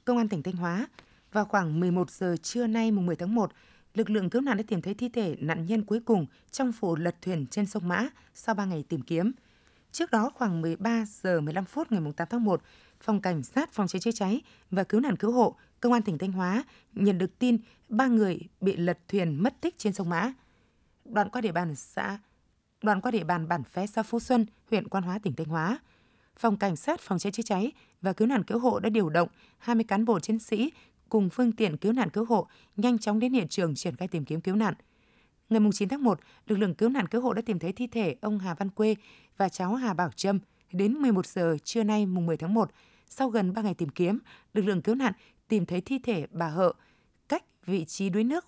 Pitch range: 180-230 Hz